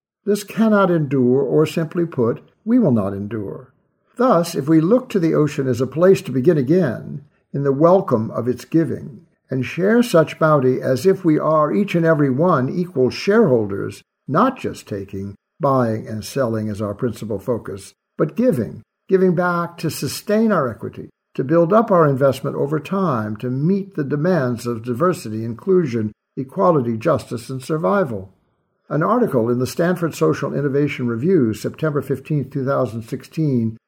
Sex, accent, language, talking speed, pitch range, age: male, American, English, 160 wpm, 125-175 Hz, 60-79